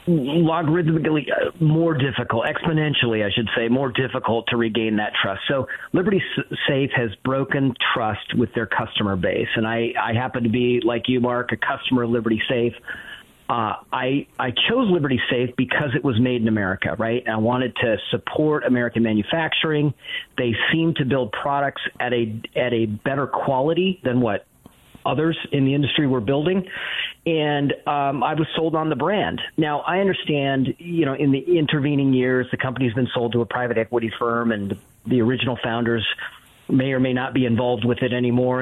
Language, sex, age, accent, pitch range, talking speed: English, male, 40-59, American, 120-150 Hz, 180 wpm